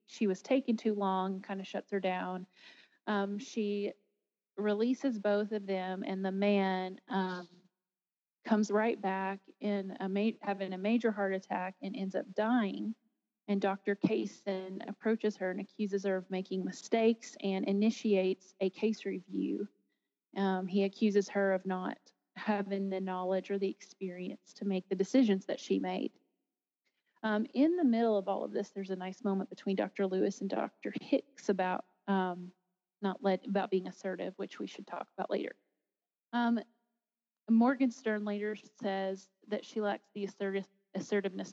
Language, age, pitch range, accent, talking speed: English, 30-49, 190-215 Hz, American, 160 wpm